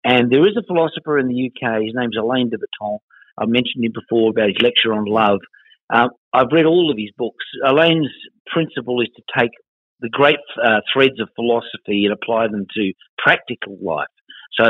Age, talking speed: 50-69, 195 wpm